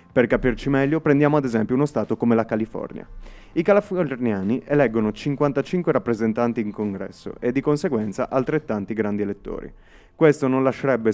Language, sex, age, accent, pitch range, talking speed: Italian, male, 30-49, native, 105-135 Hz, 145 wpm